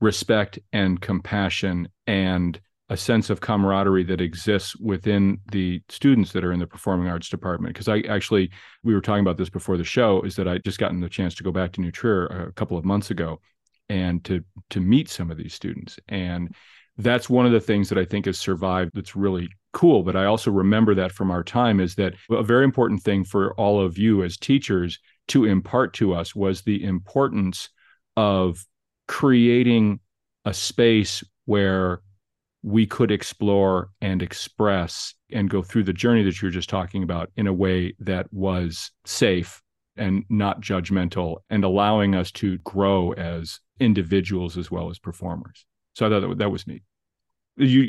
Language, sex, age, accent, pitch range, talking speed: English, male, 40-59, American, 90-110 Hz, 185 wpm